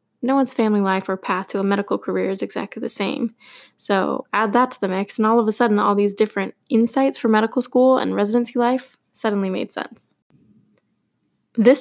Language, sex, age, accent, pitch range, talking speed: English, female, 10-29, American, 205-250 Hz, 200 wpm